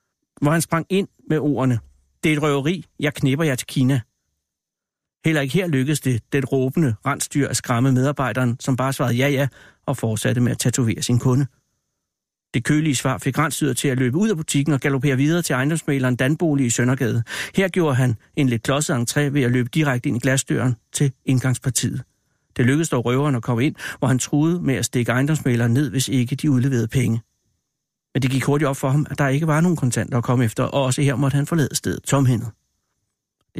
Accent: native